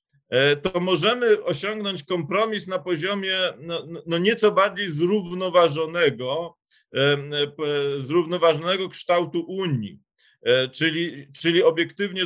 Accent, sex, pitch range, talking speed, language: native, male, 145-185 Hz, 85 wpm, Polish